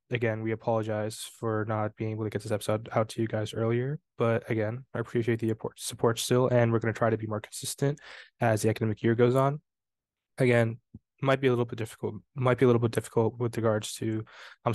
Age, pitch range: 10-29, 110-120 Hz